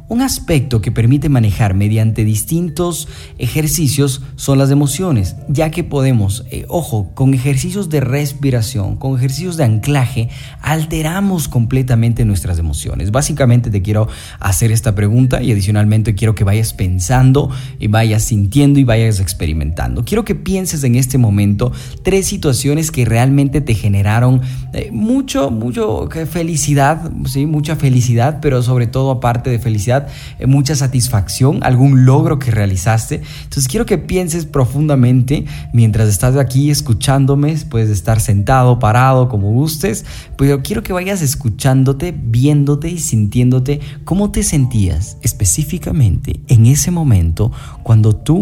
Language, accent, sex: Spanish, Mexican, male